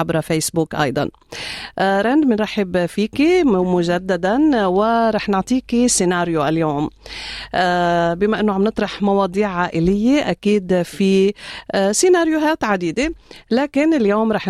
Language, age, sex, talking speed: Arabic, 40-59, female, 110 wpm